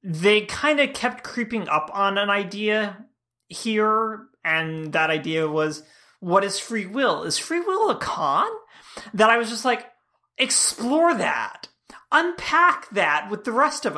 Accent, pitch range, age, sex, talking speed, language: American, 160-230 Hz, 30-49, male, 155 wpm, English